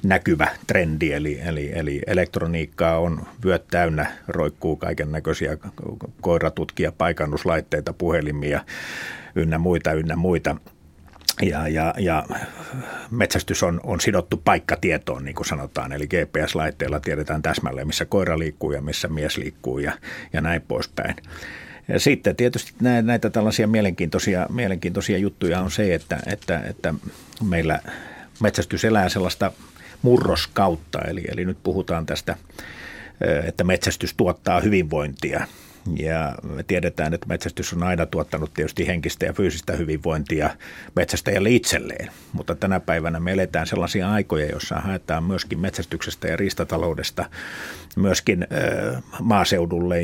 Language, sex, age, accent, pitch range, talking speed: Finnish, male, 50-69, native, 80-95 Hz, 120 wpm